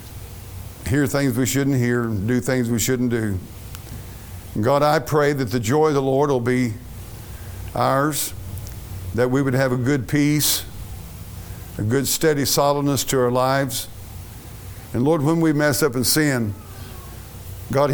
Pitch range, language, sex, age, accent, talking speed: 105-135 Hz, English, male, 60-79, American, 155 wpm